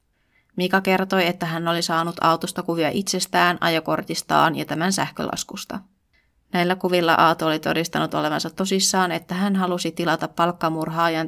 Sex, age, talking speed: female, 20-39, 135 wpm